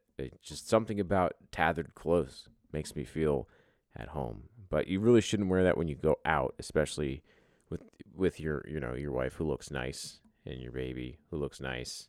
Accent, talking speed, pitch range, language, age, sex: American, 185 wpm, 70-100 Hz, English, 30-49, male